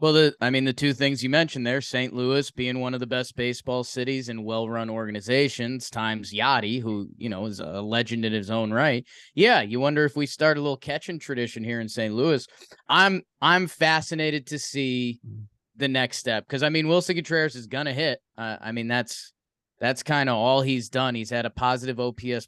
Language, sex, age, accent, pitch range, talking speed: English, male, 20-39, American, 115-150 Hz, 215 wpm